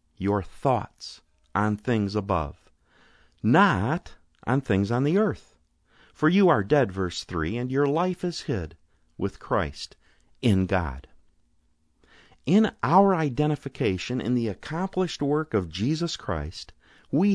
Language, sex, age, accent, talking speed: English, male, 50-69, American, 130 wpm